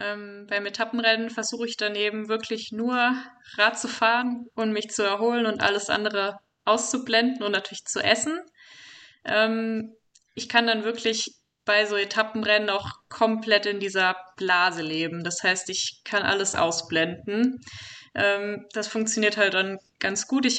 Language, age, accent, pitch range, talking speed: German, 20-39, German, 200-230 Hz, 150 wpm